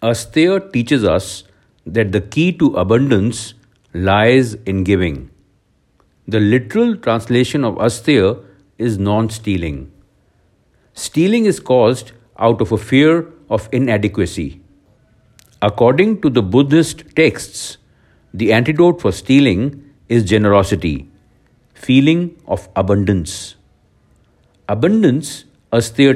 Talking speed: 100 wpm